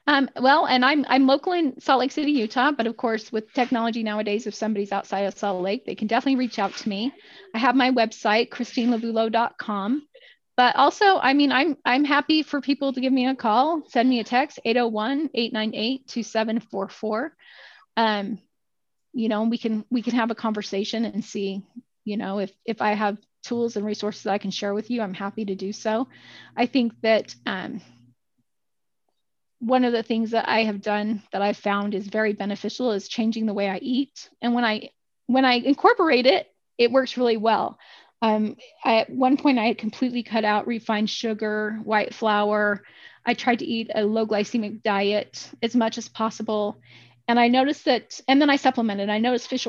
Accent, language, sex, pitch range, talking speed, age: American, English, female, 210-255 Hz, 190 wpm, 30-49